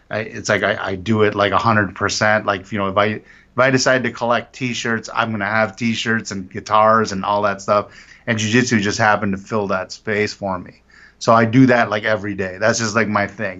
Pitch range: 100-115 Hz